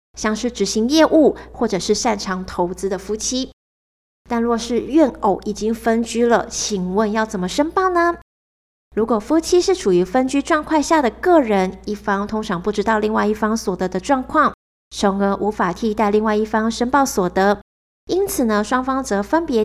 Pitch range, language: 195-255 Hz, Chinese